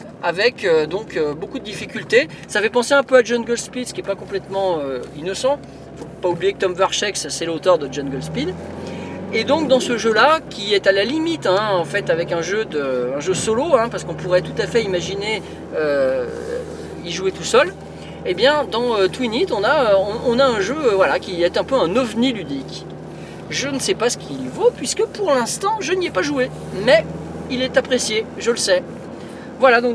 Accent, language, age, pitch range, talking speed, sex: French, French, 40-59, 195-280 Hz, 230 wpm, male